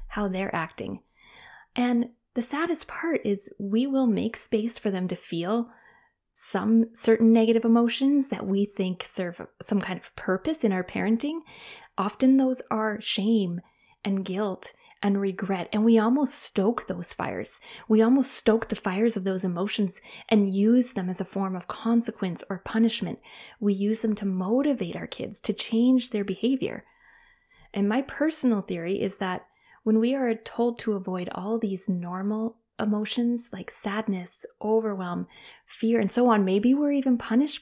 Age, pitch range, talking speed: 20-39, 195-235 Hz, 160 wpm